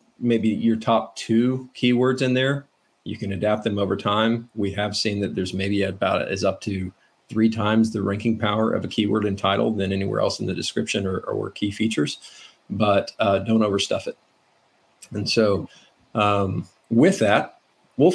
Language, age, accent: English, 40-59, American